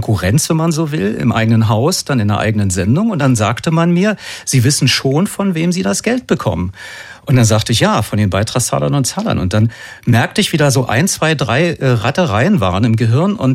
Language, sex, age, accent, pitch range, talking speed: German, male, 40-59, German, 120-155 Hz, 230 wpm